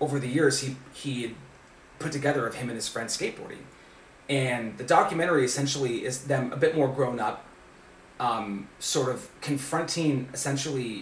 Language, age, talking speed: English, 30-49, 160 wpm